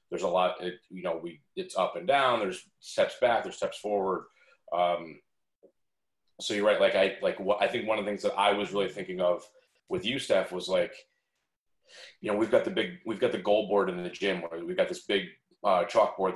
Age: 30-49